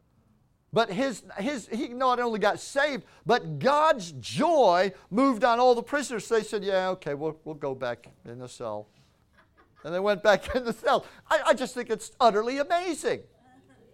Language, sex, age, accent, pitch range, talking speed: English, male, 50-69, American, 145-225 Hz, 180 wpm